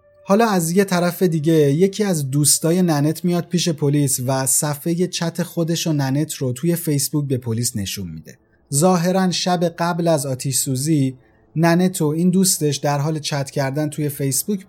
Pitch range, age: 135-175 Hz, 30-49